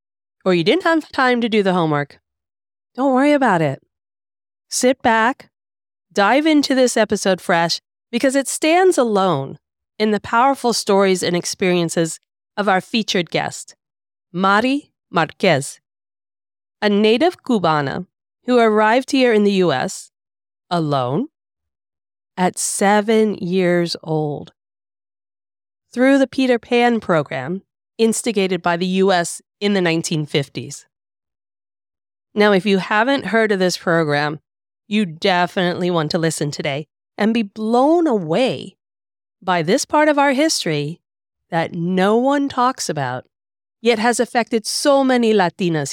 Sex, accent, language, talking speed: female, American, English, 125 wpm